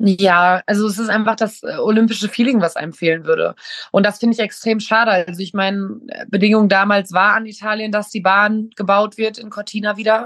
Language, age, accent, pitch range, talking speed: German, 20-39, German, 185-215 Hz, 205 wpm